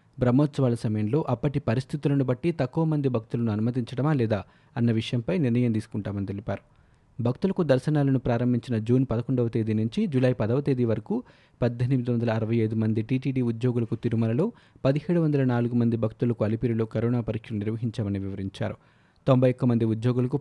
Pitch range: 115-140 Hz